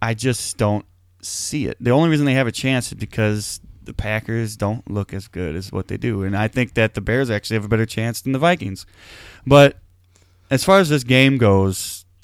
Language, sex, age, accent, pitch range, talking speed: English, male, 20-39, American, 95-125 Hz, 220 wpm